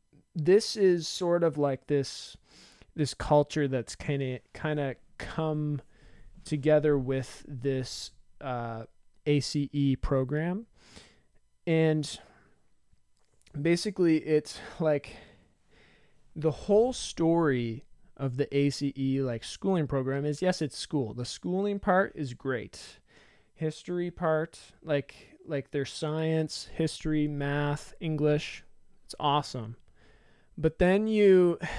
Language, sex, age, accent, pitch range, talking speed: English, male, 20-39, American, 130-160 Hz, 105 wpm